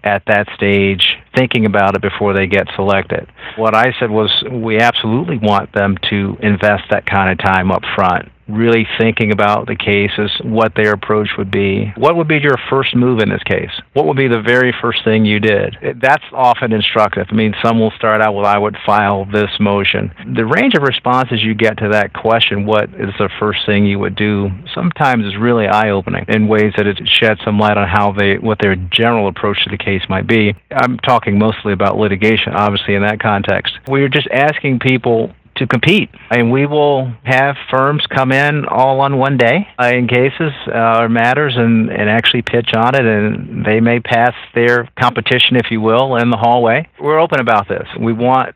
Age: 50-69